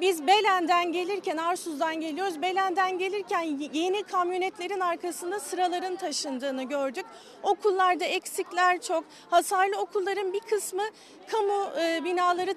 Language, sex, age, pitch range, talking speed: Turkish, female, 40-59, 330-390 Hz, 105 wpm